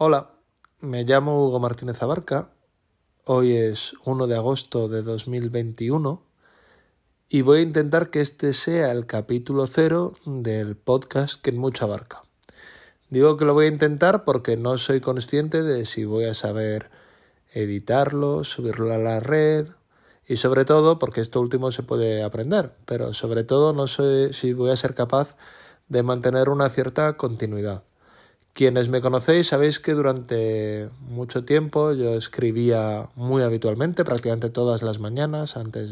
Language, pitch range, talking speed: Spanish, 115-140 Hz, 150 wpm